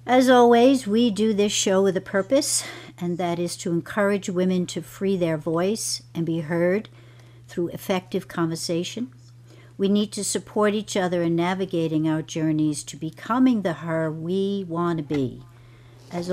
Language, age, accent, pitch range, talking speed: English, 60-79, American, 130-195 Hz, 160 wpm